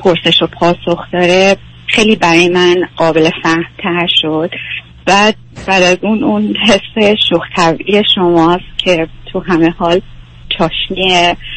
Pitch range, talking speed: 170-195 Hz, 120 wpm